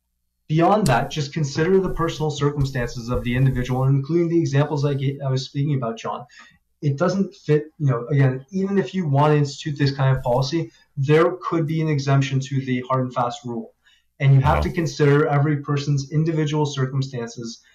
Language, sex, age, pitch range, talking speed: English, male, 20-39, 130-150 Hz, 185 wpm